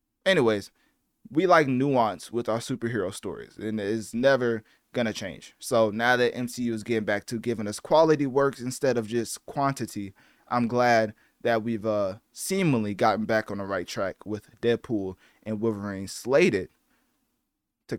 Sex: male